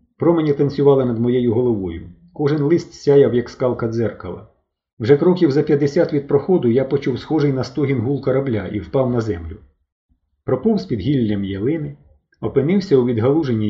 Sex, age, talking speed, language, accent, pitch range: male, 30-49, 155 wpm, Ukrainian, native, 95-140 Hz